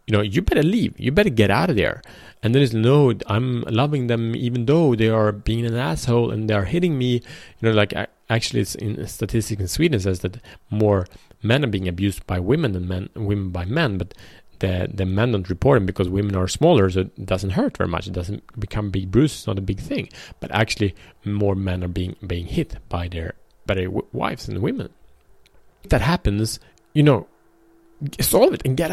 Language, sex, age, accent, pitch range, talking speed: Swedish, male, 30-49, Norwegian, 100-125 Hz, 215 wpm